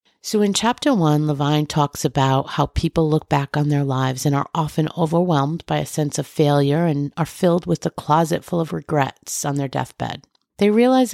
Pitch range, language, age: 145-175 Hz, English, 50-69